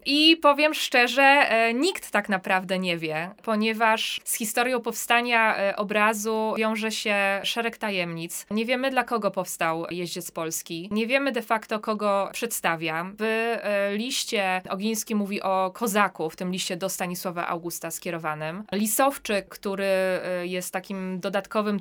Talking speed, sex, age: 130 wpm, female, 20-39